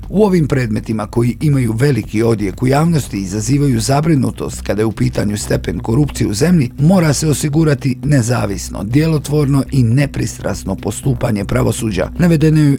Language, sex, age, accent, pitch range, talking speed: Croatian, male, 50-69, native, 110-150 Hz, 140 wpm